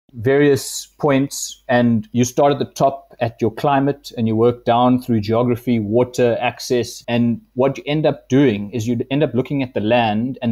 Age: 20-39